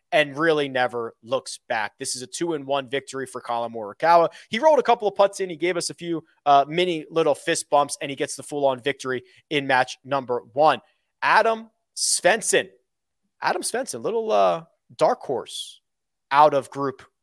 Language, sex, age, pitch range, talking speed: English, male, 30-49, 140-205 Hz, 180 wpm